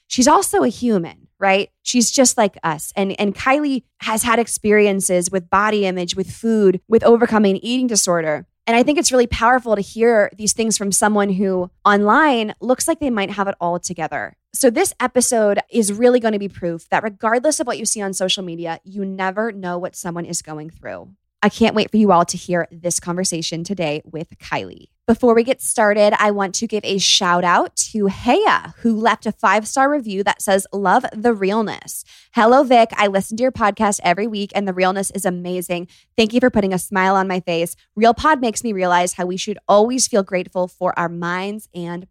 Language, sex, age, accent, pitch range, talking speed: English, female, 20-39, American, 185-230 Hz, 210 wpm